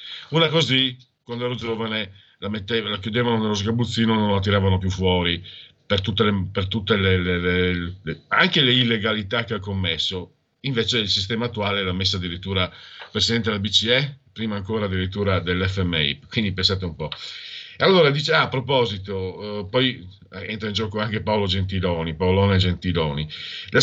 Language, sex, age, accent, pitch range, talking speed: Italian, male, 50-69, native, 95-135 Hz, 170 wpm